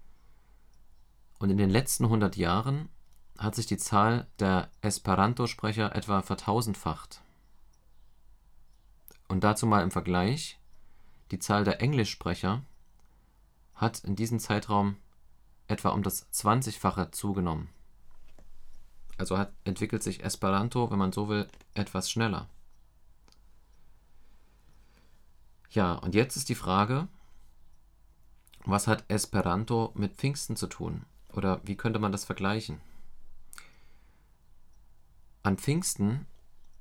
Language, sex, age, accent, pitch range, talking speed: German, male, 40-59, German, 90-110 Hz, 105 wpm